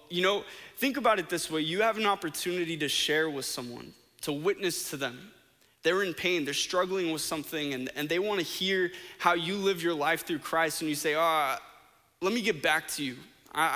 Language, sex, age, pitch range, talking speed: English, male, 20-39, 145-180 Hz, 220 wpm